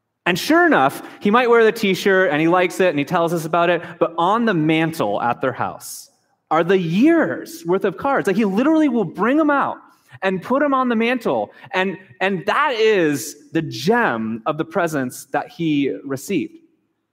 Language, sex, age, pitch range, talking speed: English, male, 30-49, 135-200 Hz, 195 wpm